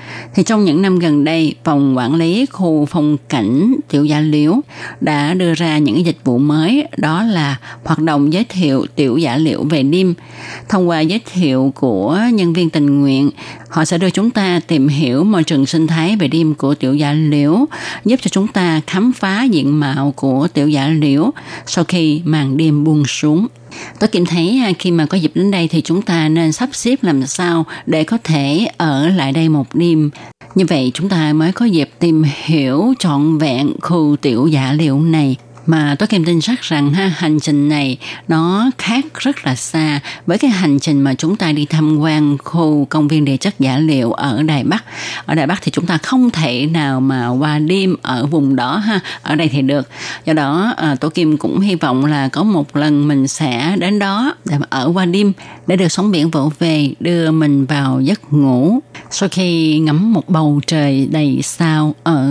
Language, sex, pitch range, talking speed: Vietnamese, female, 145-180 Hz, 205 wpm